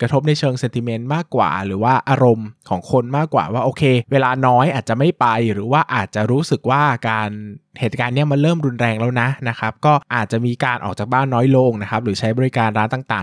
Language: Thai